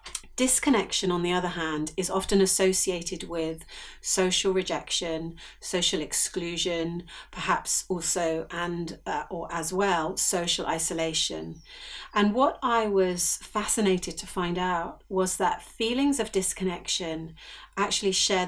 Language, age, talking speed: English, 40-59, 120 wpm